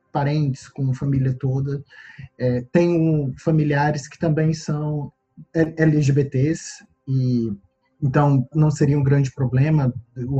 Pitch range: 130-155 Hz